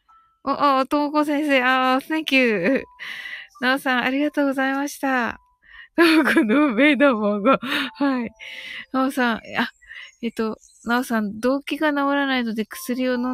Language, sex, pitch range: Japanese, female, 220-315 Hz